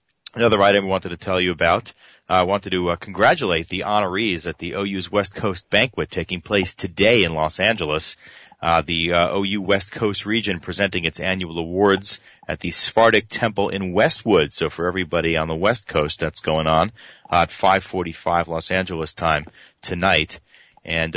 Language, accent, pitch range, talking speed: English, American, 85-100 Hz, 175 wpm